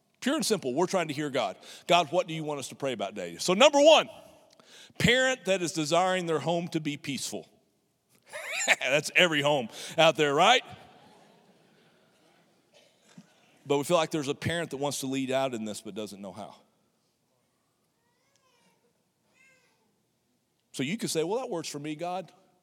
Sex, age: male, 40-59